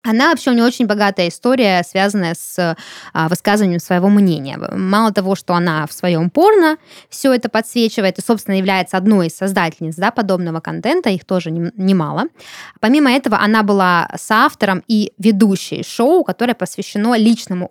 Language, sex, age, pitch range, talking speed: Russian, female, 20-39, 180-235 Hz, 150 wpm